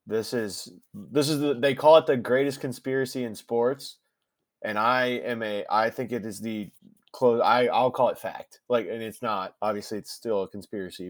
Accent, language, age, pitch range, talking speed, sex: American, English, 20-39, 100-120 Hz, 200 wpm, male